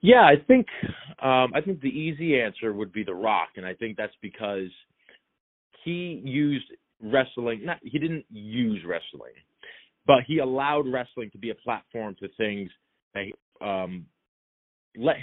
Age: 30-49